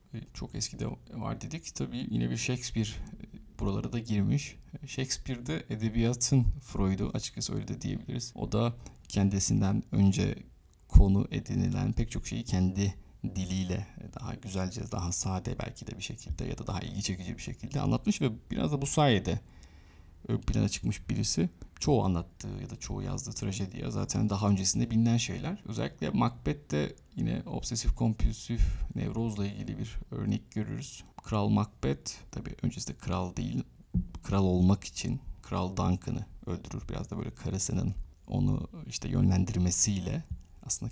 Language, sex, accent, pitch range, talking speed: Turkish, male, native, 95-120 Hz, 140 wpm